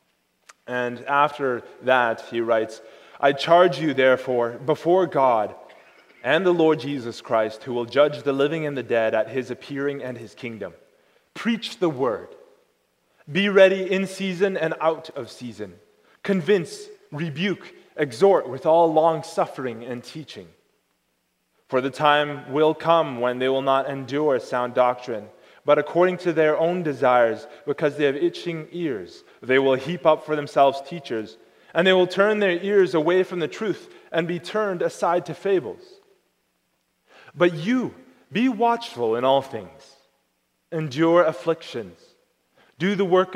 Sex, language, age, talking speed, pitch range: male, English, 20-39, 150 wpm, 130-175 Hz